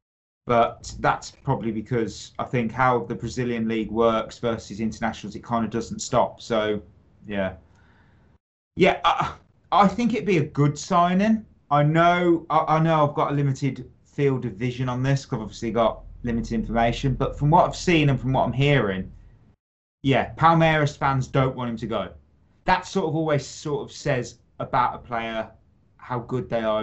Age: 30-49